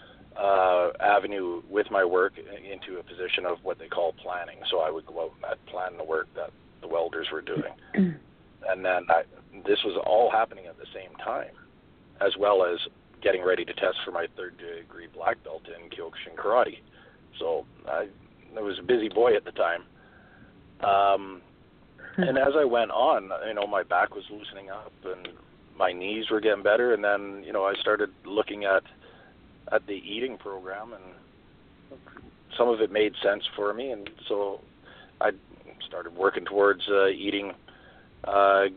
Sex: male